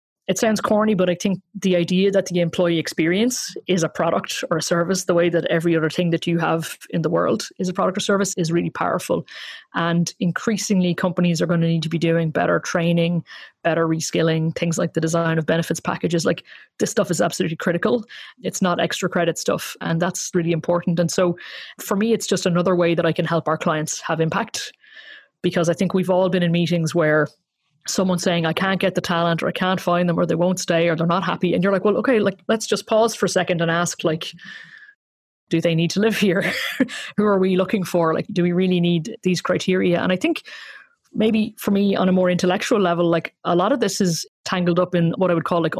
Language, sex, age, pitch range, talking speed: English, female, 20-39, 165-190 Hz, 230 wpm